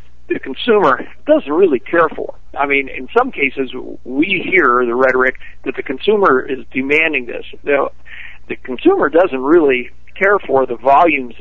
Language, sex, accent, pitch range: English, male, American, 120-160 Hz